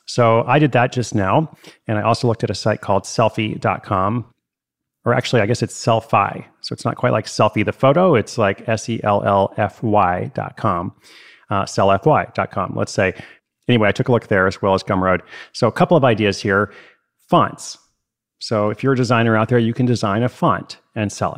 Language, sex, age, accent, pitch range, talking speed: English, male, 30-49, American, 105-130 Hz, 190 wpm